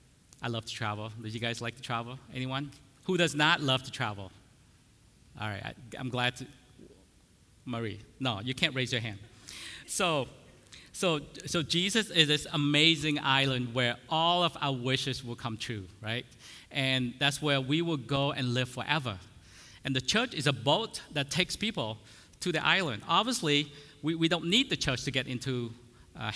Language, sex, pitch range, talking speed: English, male, 125-155 Hz, 180 wpm